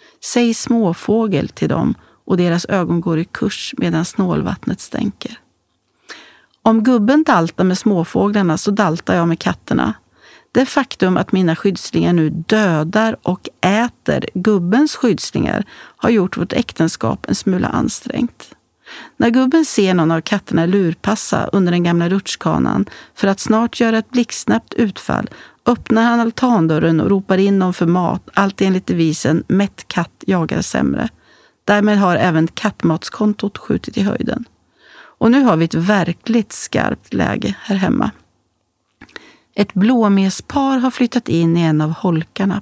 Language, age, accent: Swedish, 40-59, native